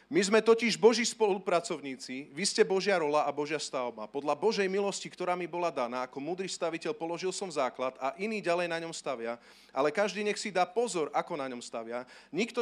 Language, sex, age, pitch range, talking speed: Slovak, male, 40-59, 140-200 Hz, 200 wpm